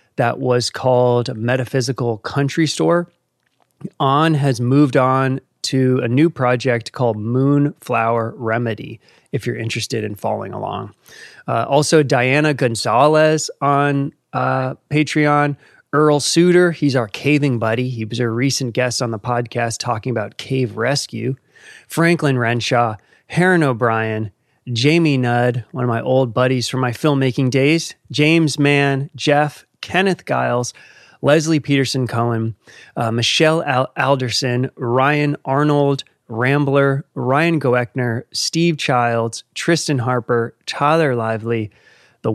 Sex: male